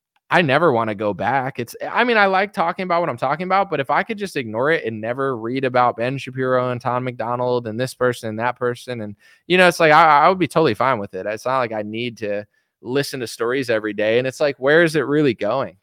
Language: English